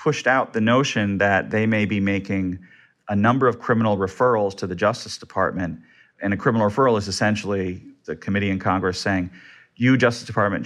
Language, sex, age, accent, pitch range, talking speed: English, male, 40-59, American, 95-115 Hz, 180 wpm